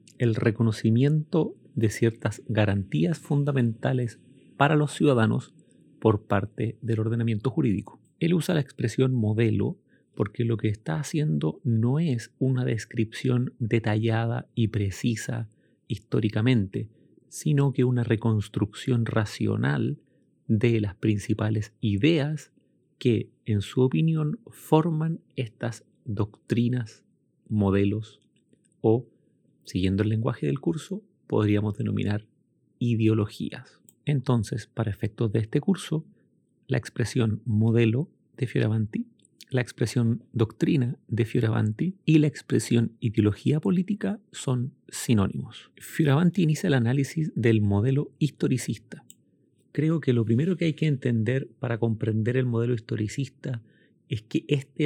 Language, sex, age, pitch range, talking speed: Spanish, male, 40-59, 110-145 Hz, 115 wpm